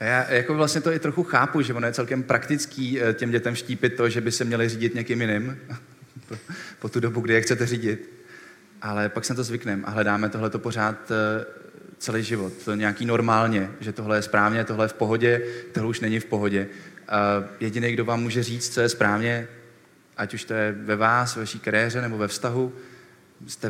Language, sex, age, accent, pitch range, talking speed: Czech, male, 20-39, native, 110-130 Hz, 200 wpm